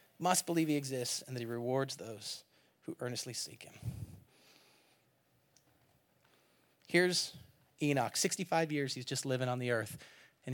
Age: 30-49